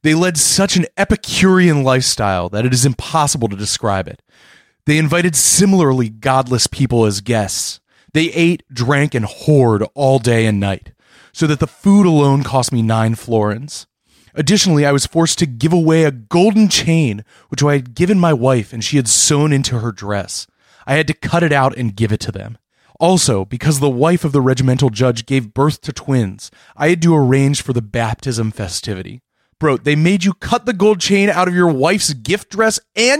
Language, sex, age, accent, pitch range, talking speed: English, male, 30-49, American, 120-165 Hz, 195 wpm